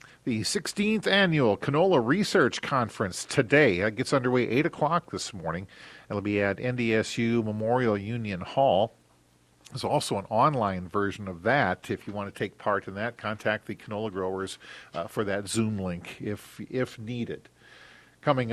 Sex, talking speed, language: male, 155 wpm, English